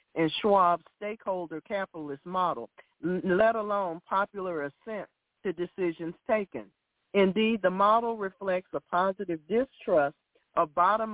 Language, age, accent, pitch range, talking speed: English, 50-69, American, 165-210 Hz, 115 wpm